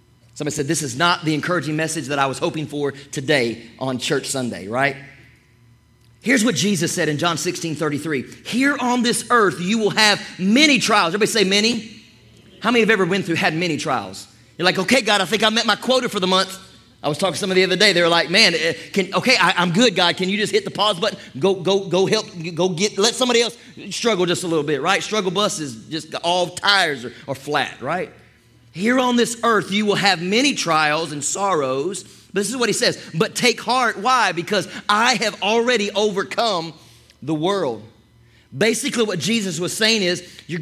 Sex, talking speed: male, 210 wpm